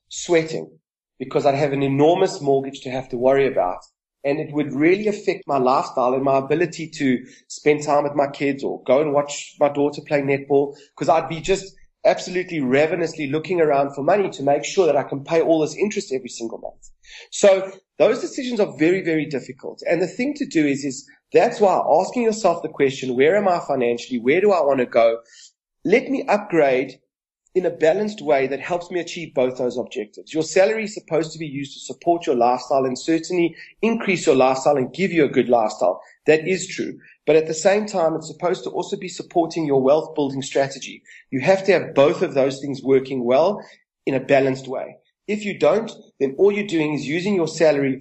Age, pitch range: 30-49, 130-175 Hz